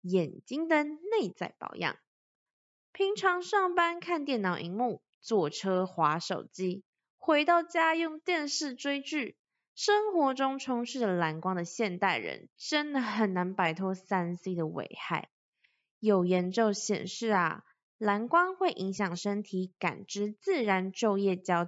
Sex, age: female, 20-39